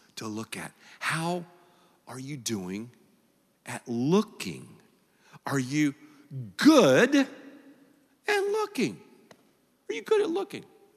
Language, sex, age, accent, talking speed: English, male, 50-69, American, 105 wpm